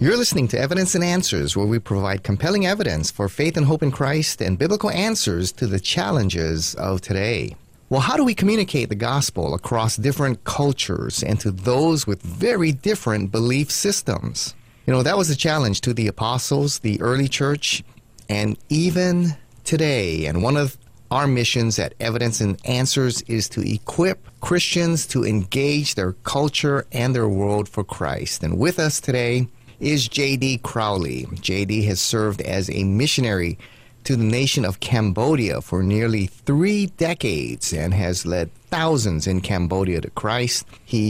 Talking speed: 160 wpm